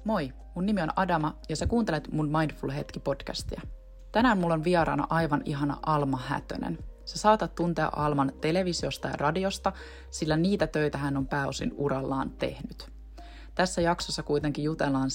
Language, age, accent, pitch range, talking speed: Finnish, 20-39, native, 135-155 Hz, 150 wpm